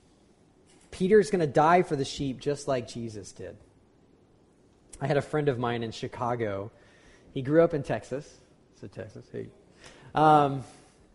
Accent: American